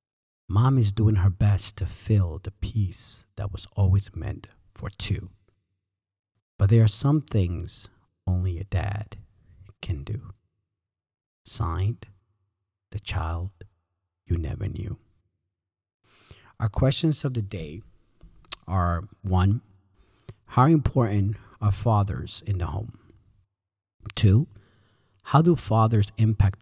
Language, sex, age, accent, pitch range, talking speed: English, male, 40-59, American, 95-110 Hz, 115 wpm